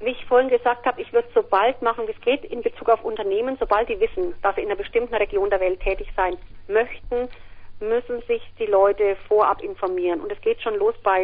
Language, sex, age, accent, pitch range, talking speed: German, female, 40-59, German, 195-290 Hz, 230 wpm